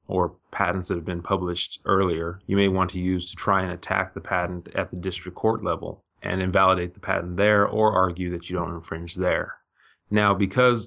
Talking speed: 205 wpm